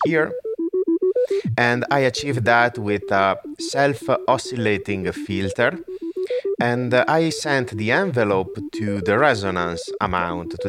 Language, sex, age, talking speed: English, male, 30-49, 105 wpm